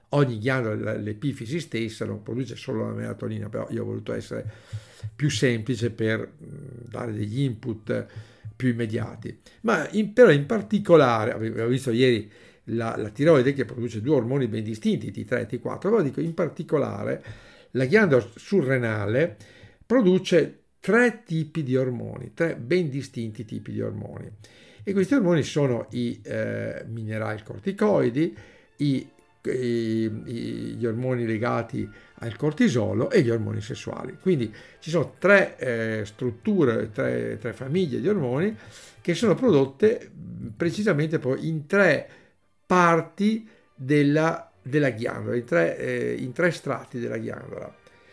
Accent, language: native, Italian